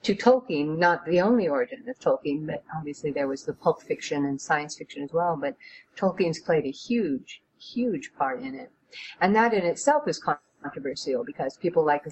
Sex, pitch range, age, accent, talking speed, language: female, 155-195 Hz, 50-69, American, 195 wpm, English